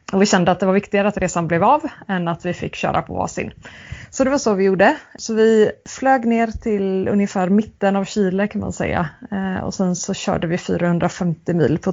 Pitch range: 175-205 Hz